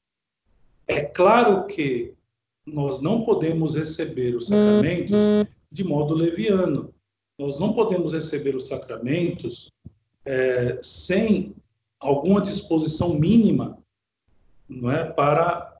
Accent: Brazilian